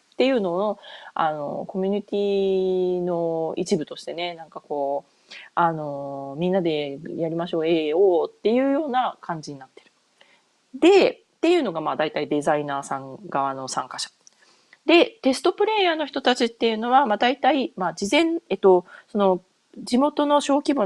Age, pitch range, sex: 30-49, 170-245 Hz, female